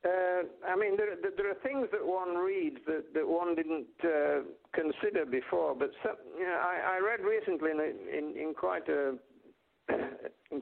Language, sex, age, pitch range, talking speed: English, male, 60-79, 145-240 Hz, 185 wpm